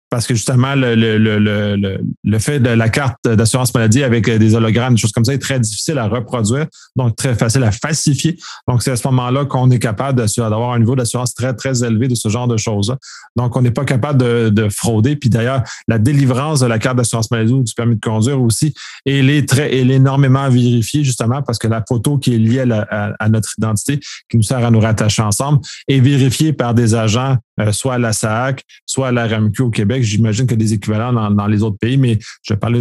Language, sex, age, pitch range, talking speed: French, male, 30-49, 115-135 Hz, 240 wpm